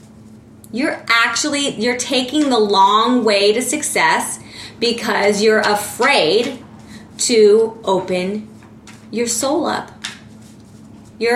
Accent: American